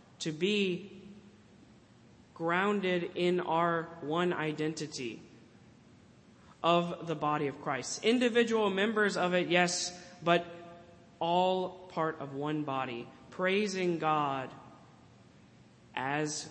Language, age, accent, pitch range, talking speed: English, 20-39, American, 160-195 Hz, 95 wpm